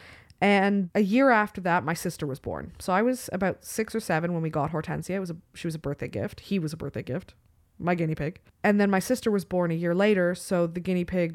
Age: 20-39